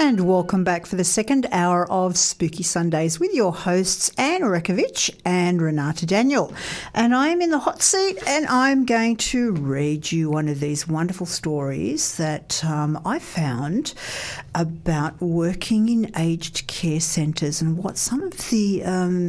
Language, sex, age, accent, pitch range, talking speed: English, female, 50-69, Australian, 160-225 Hz, 160 wpm